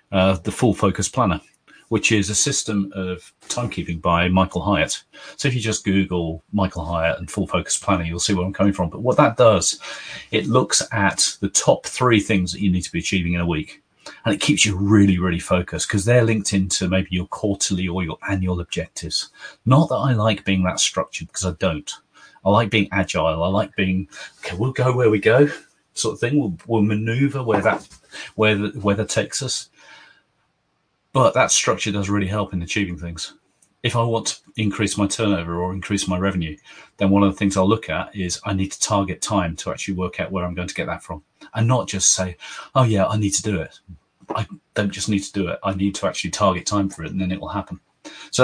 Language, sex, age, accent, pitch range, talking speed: English, male, 40-59, British, 90-105 Hz, 225 wpm